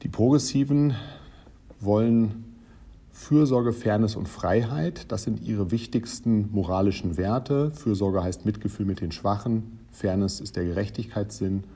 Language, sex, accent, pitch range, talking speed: German, male, German, 90-115 Hz, 115 wpm